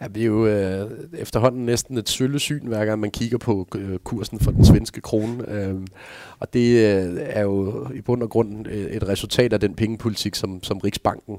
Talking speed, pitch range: 190 wpm, 95-115 Hz